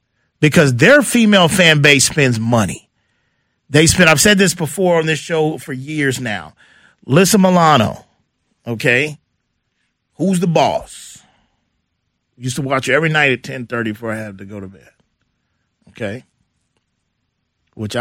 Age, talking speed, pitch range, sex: 40-59, 140 wpm, 125-175 Hz, male